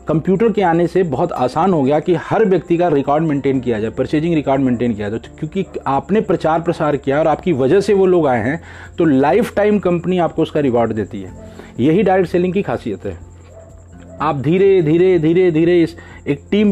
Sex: male